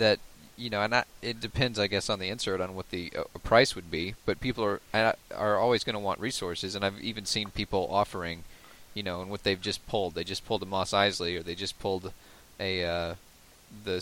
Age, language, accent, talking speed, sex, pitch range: 30-49, English, American, 235 wpm, male, 95-110 Hz